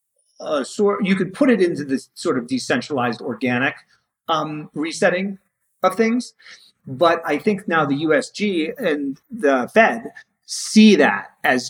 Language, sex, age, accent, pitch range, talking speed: English, male, 30-49, American, 135-195 Hz, 145 wpm